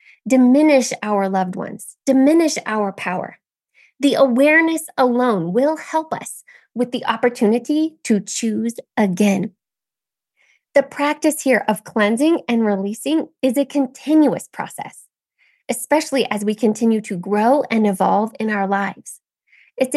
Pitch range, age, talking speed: 225-290 Hz, 20-39, 125 wpm